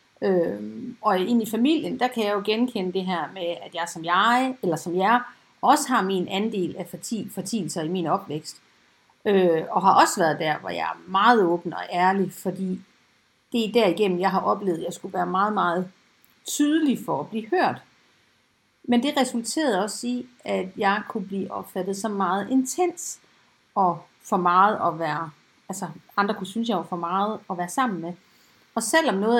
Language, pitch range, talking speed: Danish, 180-240 Hz, 190 wpm